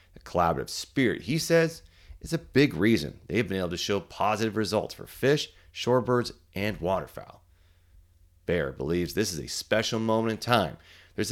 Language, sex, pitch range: English, male, 85-120 Hz